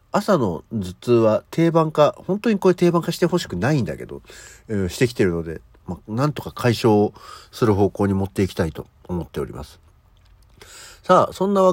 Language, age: Japanese, 50-69